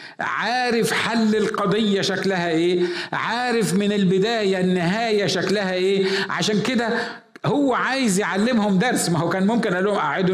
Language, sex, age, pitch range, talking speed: Arabic, male, 50-69, 170-225 Hz, 140 wpm